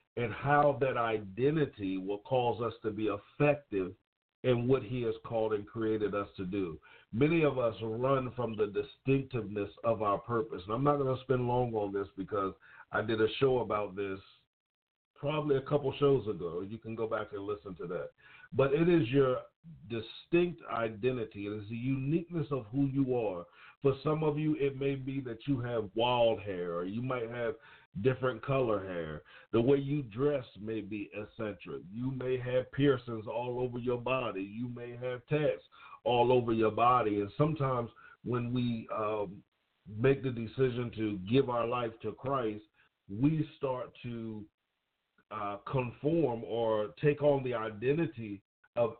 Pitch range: 110-140 Hz